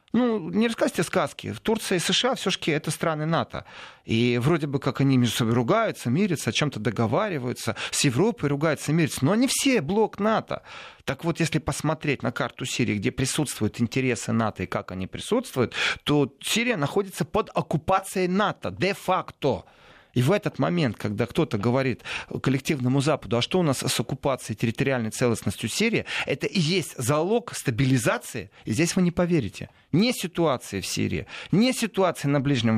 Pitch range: 125-185 Hz